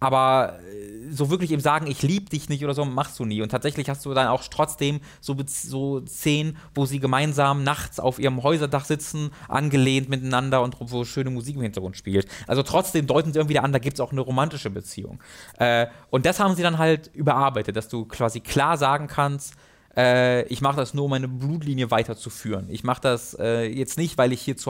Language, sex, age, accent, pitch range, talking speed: German, male, 20-39, German, 120-155 Hz, 215 wpm